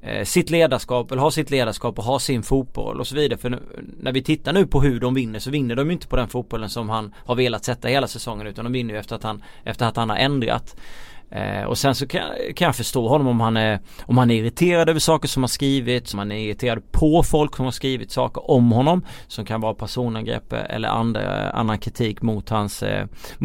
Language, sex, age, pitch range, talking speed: Swedish, male, 30-49, 115-140 Hz, 240 wpm